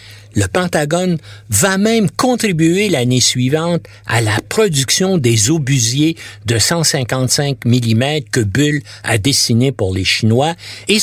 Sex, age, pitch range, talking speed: male, 60-79, 110-150 Hz, 125 wpm